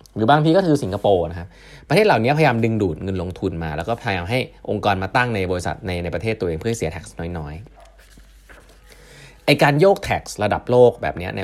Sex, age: male, 20-39